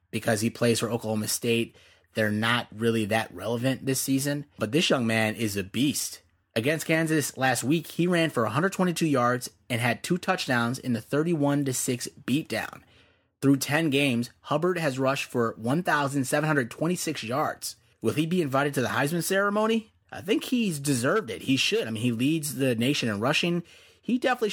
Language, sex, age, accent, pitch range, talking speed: English, male, 30-49, American, 115-145 Hz, 175 wpm